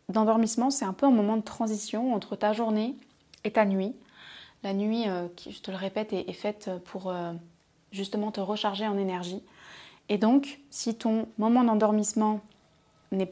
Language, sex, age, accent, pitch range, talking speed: French, female, 20-39, French, 195-230 Hz, 170 wpm